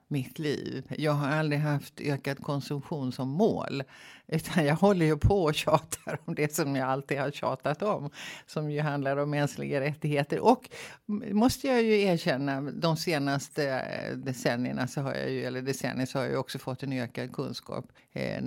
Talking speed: 175 wpm